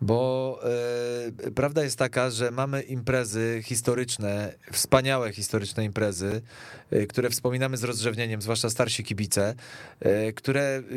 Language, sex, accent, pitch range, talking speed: Polish, male, native, 125-150 Hz, 105 wpm